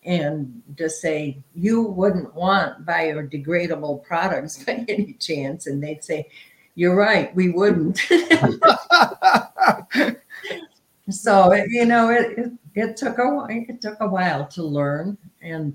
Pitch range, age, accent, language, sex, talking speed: 140-180 Hz, 60-79, American, English, female, 115 wpm